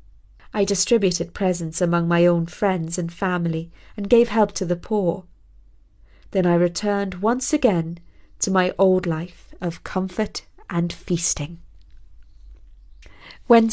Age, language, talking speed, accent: 30-49, English, 125 wpm, British